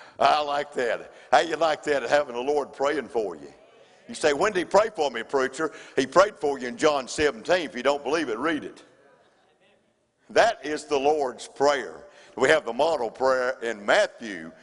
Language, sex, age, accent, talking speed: English, male, 60-79, American, 195 wpm